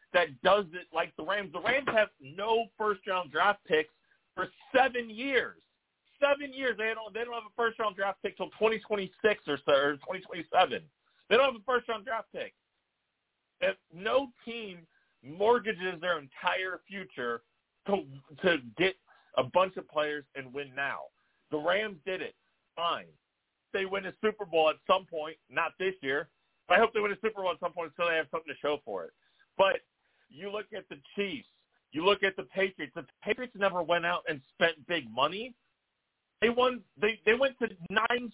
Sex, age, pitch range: male, 40-59, 160-225 Hz